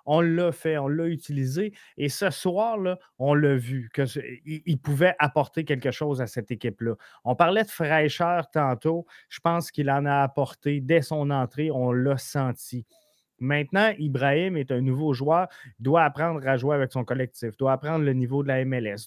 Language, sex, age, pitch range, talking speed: French, male, 30-49, 130-165 Hz, 185 wpm